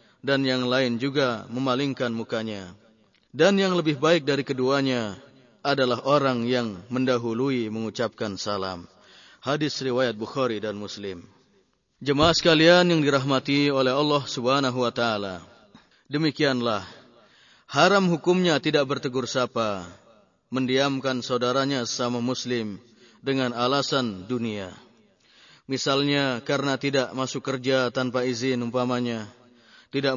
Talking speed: 105 wpm